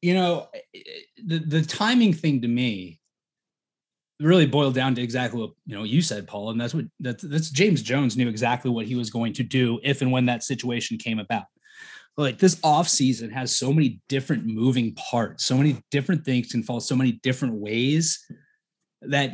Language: English